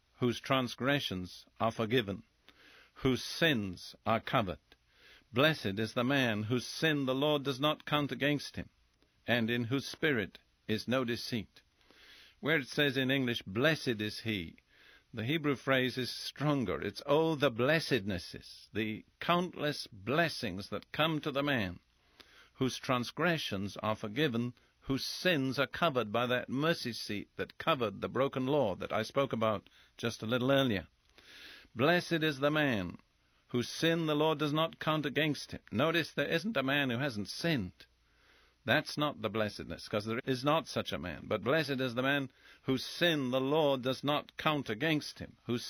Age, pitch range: 50-69, 110-150 Hz